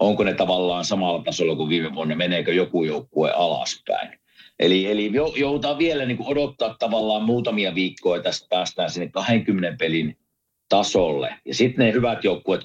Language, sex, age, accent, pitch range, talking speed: Finnish, male, 50-69, native, 95-140 Hz, 150 wpm